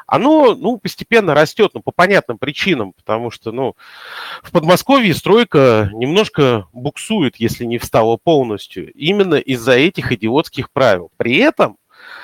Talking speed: 135 wpm